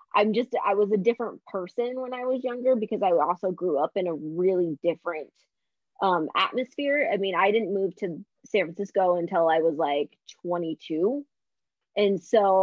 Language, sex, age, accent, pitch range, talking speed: English, female, 20-39, American, 180-230 Hz, 175 wpm